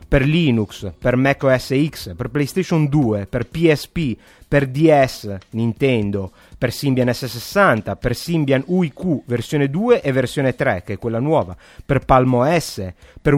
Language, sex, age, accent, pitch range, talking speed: Italian, male, 30-49, native, 115-155 Hz, 150 wpm